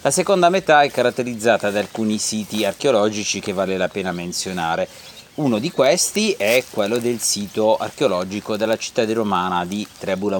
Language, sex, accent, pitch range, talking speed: Italian, male, native, 95-125 Hz, 160 wpm